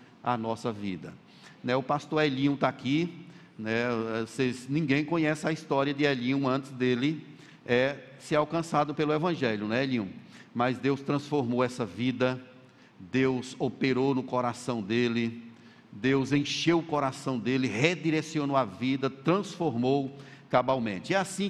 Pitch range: 125-160 Hz